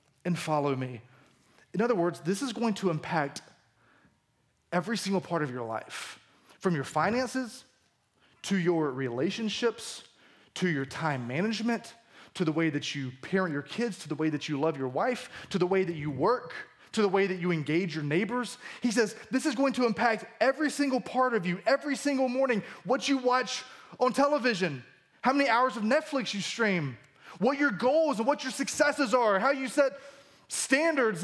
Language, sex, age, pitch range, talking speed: English, male, 20-39, 180-265 Hz, 185 wpm